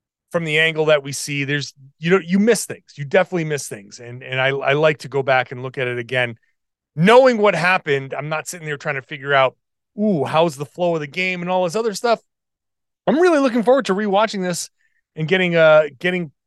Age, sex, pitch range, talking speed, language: 30-49, male, 145-200 Hz, 230 wpm, English